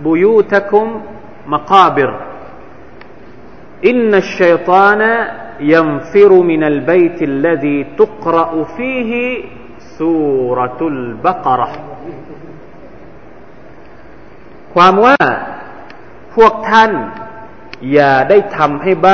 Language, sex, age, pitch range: Thai, male, 30-49, 150-215 Hz